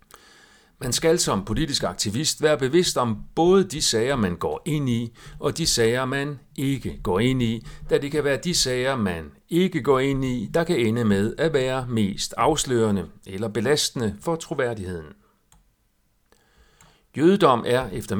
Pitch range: 110-160 Hz